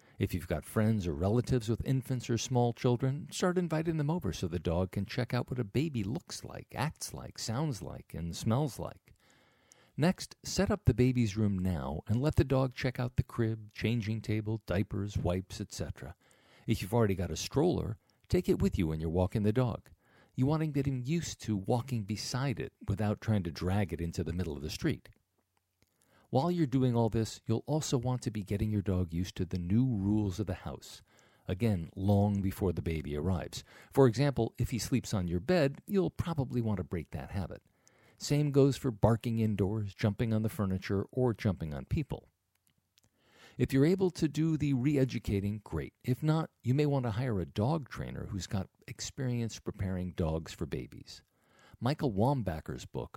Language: English